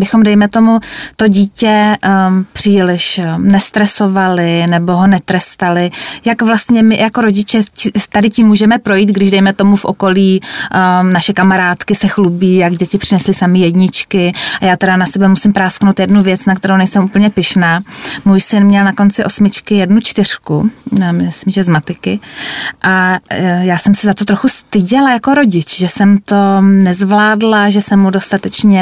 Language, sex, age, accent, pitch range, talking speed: Czech, female, 20-39, native, 190-210 Hz, 165 wpm